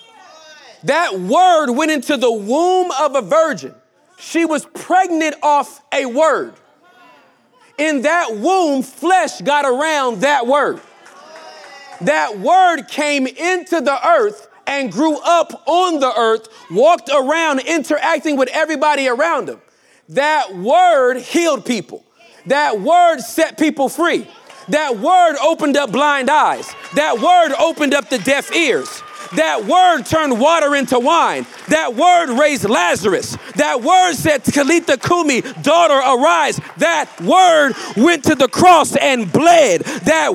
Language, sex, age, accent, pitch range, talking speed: English, male, 40-59, American, 275-335 Hz, 135 wpm